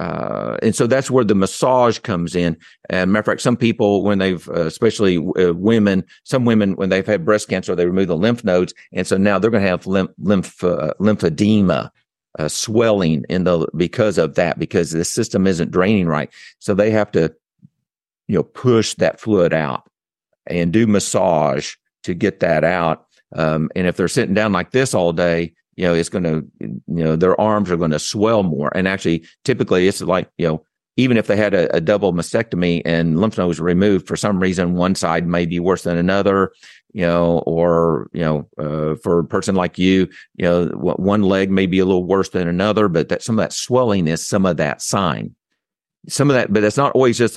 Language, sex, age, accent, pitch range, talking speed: English, male, 50-69, American, 85-110 Hz, 215 wpm